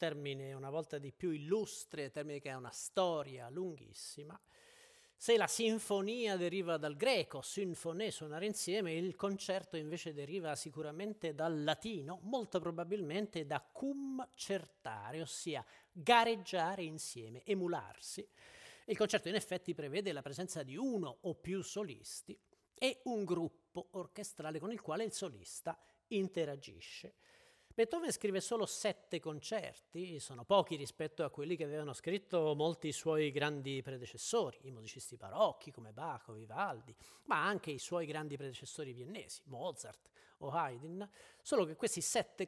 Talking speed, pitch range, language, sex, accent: 135 wpm, 145-200 Hz, Italian, male, native